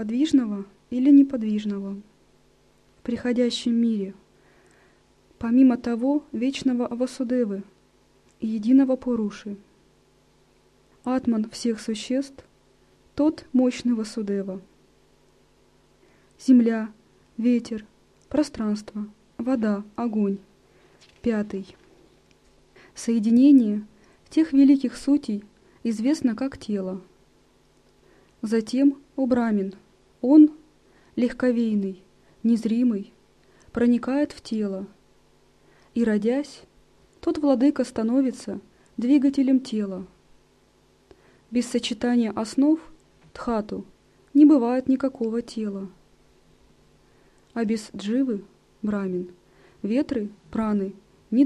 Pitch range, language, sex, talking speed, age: 205-260 Hz, Russian, female, 70 wpm, 20-39